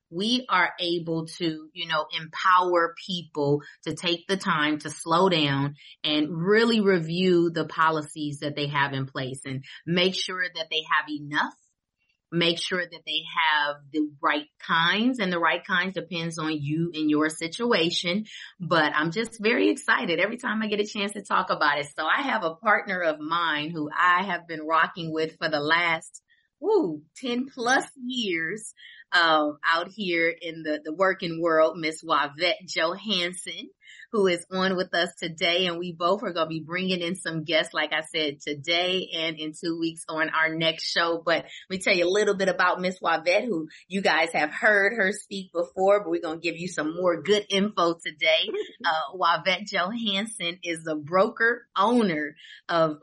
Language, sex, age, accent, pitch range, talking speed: English, female, 30-49, American, 160-190 Hz, 180 wpm